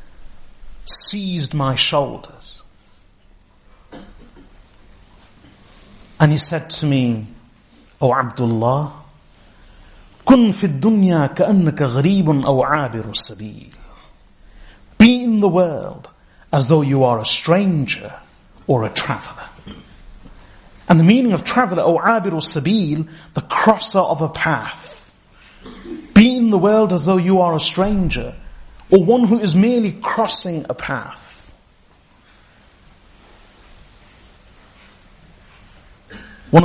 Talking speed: 90 wpm